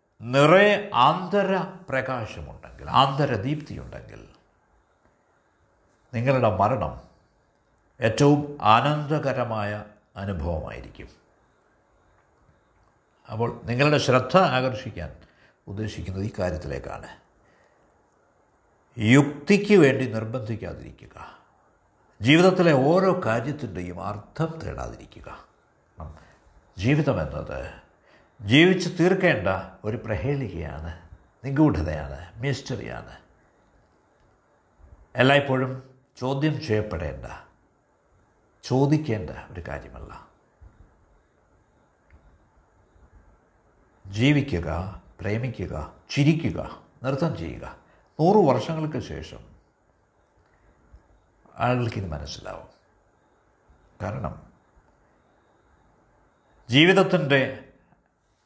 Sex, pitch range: male, 90-140 Hz